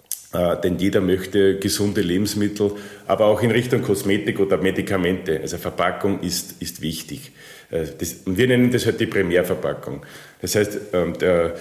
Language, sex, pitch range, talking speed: German, male, 90-110 Hz, 145 wpm